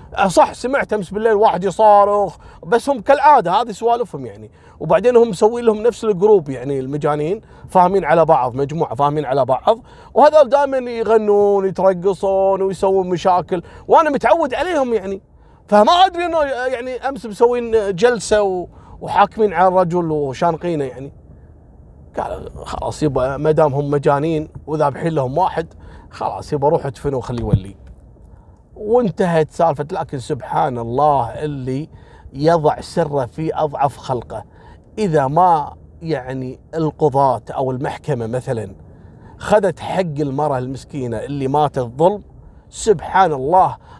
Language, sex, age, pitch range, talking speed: Arabic, male, 30-49, 135-200 Hz, 125 wpm